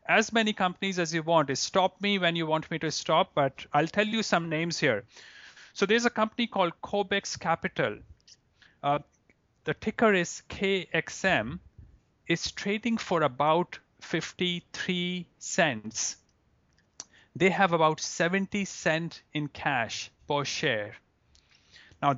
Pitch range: 140-180 Hz